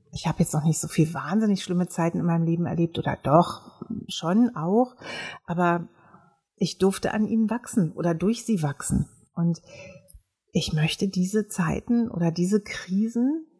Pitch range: 170-205 Hz